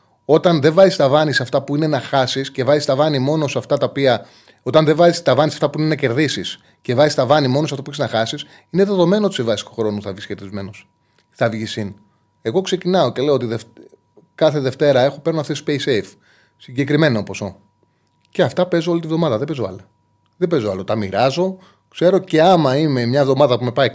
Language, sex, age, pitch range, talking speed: Greek, male, 30-49, 110-155 Hz, 230 wpm